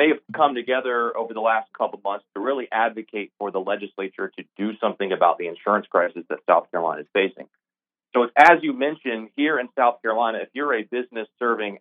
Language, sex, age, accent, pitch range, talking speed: English, male, 30-49, American, 105-130 Hz, 210 wpm